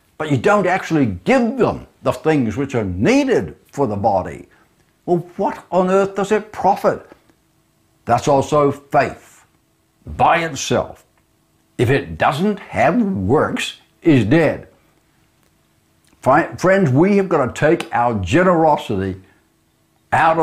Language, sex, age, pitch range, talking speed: English, male, 60-79, 125-170 Hz, 125 wpm